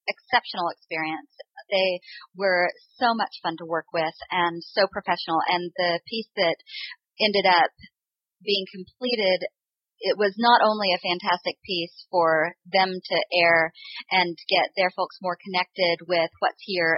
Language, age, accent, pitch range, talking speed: English, 40-59, American, 175-215 Hz, 145 wpm